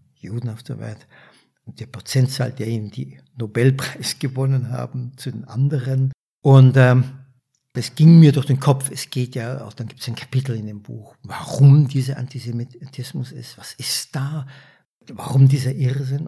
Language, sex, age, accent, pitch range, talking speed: German, male, 60-79, Austrian, 120-140 Hz, 170 wpm